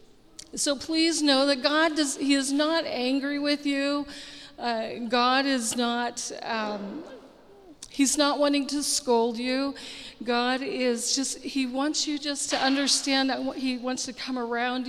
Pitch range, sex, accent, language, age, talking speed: 235-280 Hz, female, American, English, 40-59, 155 wpm